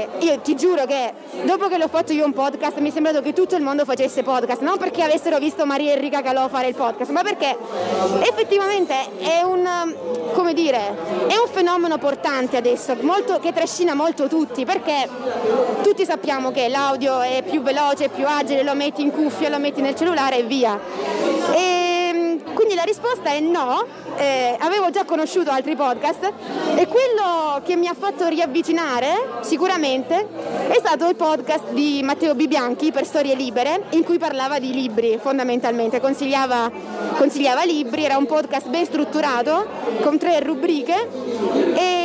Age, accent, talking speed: 20-39, native, 155 wpm